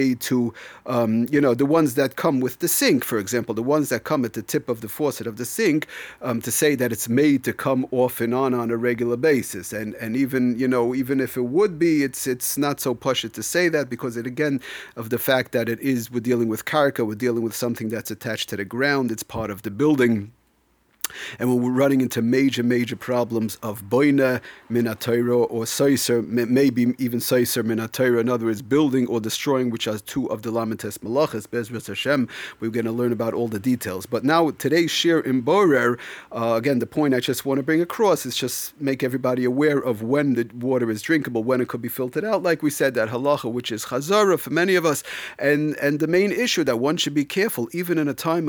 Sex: male